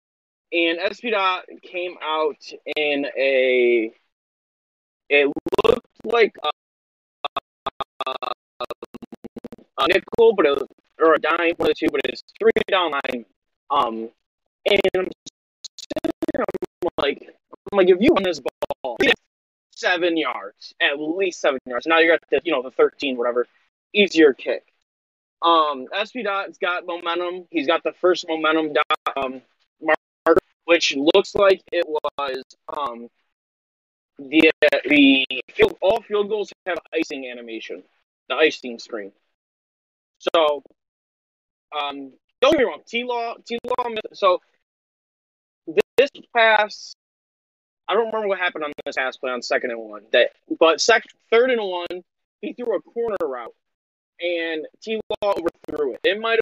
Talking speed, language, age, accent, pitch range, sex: 140 wpm, English, 20-39, American, 145-220 Hz, male